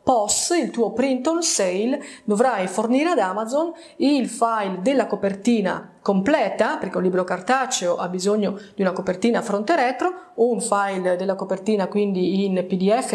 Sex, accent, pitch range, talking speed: female, native, 195-255 Hz, 150 wpm